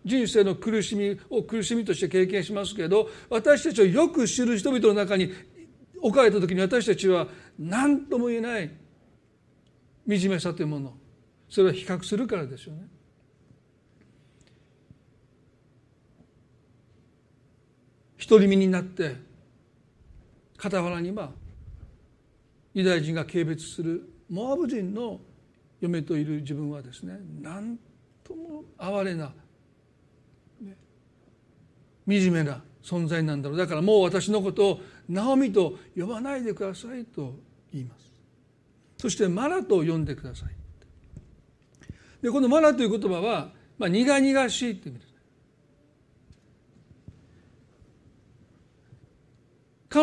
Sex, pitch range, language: male, 140-220 Hz, Japanese